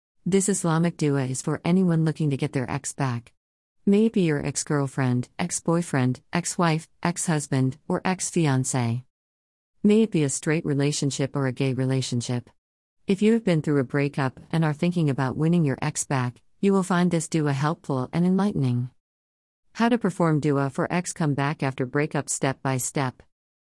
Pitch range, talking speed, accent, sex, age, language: 130-160 Hz, 165 wpm, American, female, 40-59, English